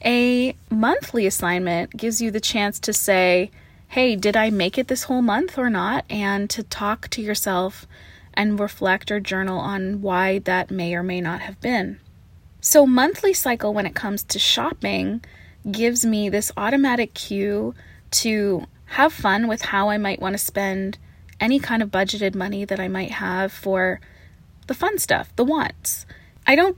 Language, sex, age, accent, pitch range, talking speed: English, female, 20-39, American, 195-250 Hz, 175 wpm